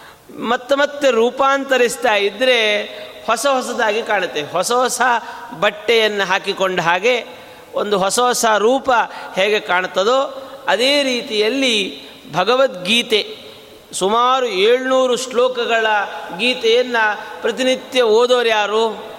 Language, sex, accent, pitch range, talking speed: Kannada, male, native, 195-255 Hz, 85 wpm